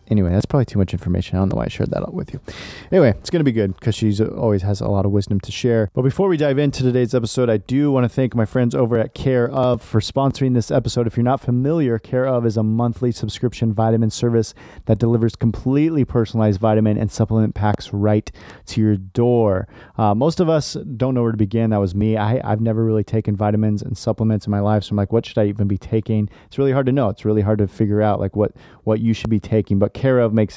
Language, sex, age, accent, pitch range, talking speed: English, male, 30-49, American, 105-125 Hz, 260 wpm